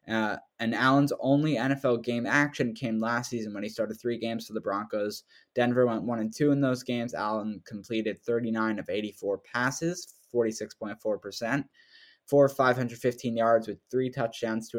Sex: male